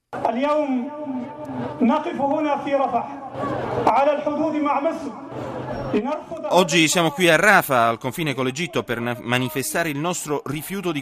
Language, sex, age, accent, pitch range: Italian, male, 30-49, native, 100-140 Hz